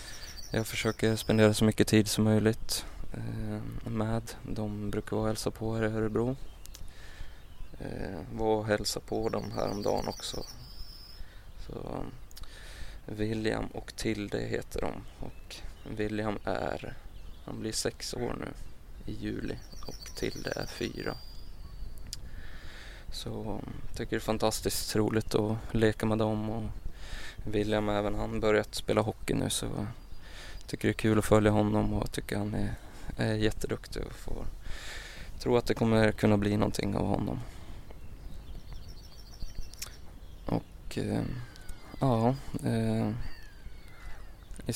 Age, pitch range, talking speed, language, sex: 20-39, 95-110 Hz, 130 wpm, Swedish, male